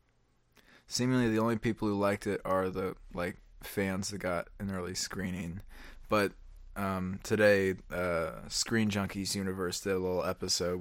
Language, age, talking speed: English, 20-39, 150 wpm